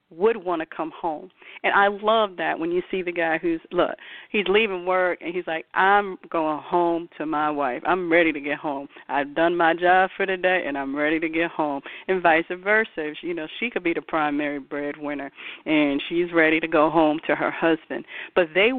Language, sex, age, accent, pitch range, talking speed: English, female, 40-59, American, 155-195 Hz, 215 wpm